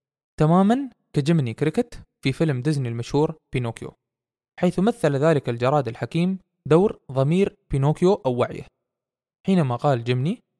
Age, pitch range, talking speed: 20-39, 125-175 Hz, 120 wpm